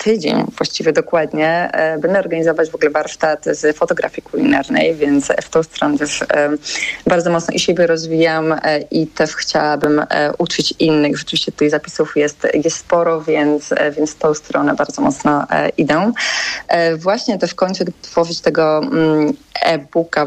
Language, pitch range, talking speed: Polish, 155-175 Hz, 135 wpm